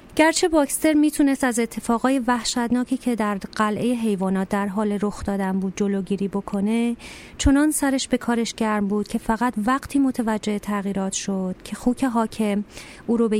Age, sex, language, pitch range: 30-49, female, Persian, 200-240 Hz